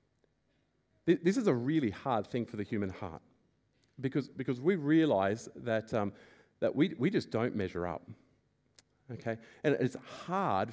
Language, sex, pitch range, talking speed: English, male, 115-145 Hz, 150 wpm